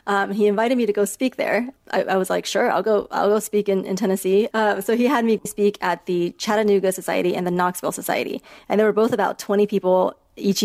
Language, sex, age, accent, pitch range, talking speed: English, female, 30-49, American, 190-215 Hz, 240 wpm